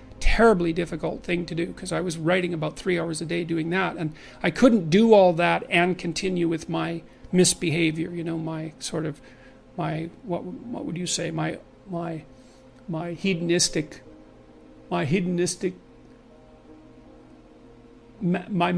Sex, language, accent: male, English, American